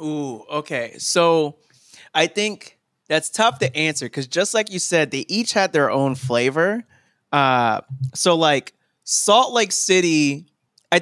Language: English